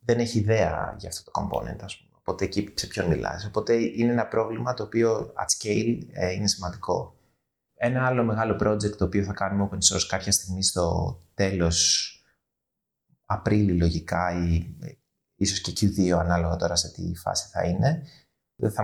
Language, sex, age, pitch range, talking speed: Greek, male, 30-49, 90-115 Hz, 160 wpm